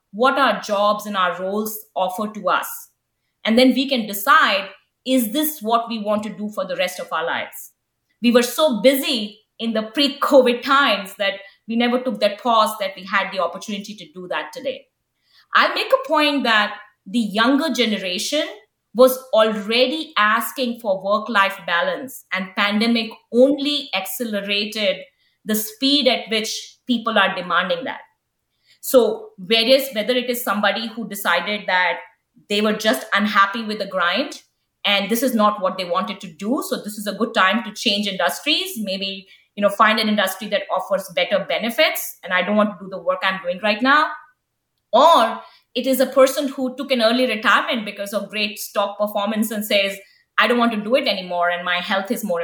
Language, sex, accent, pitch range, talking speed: English, female, Indian, 200-260 Hz, 185 wpm